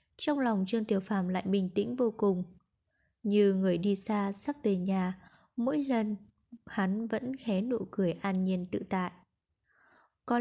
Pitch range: 195-235 Hz